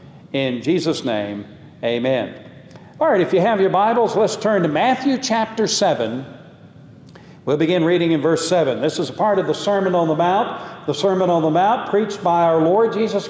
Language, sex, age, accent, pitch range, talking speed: English, male, 60-79, American, 165-210 Hz, 195 wpm